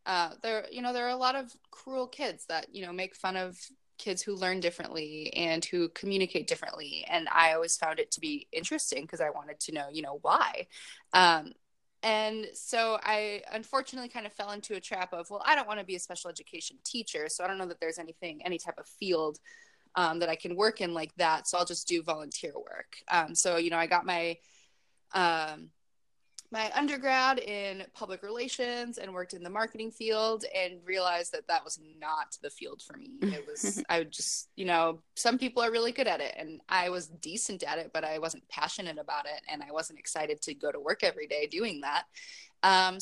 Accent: American